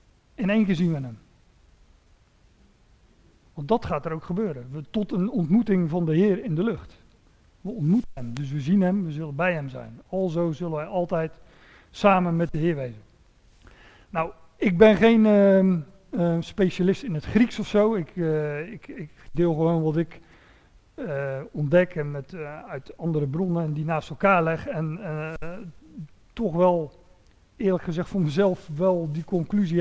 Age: 50-69